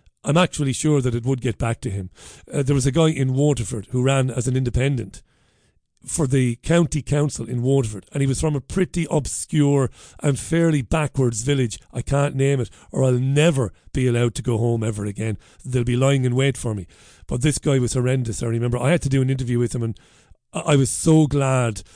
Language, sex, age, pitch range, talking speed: English, male, 40-59, 125-155 Hz, 220 wpm